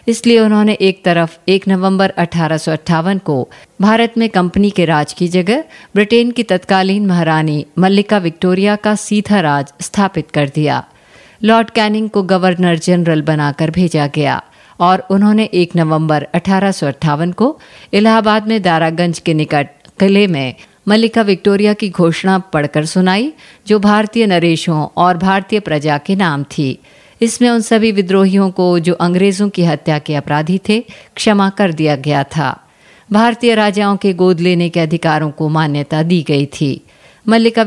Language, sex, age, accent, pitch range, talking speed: Hindi, female, 50-69, native, 160-205 Hz, 150 wpm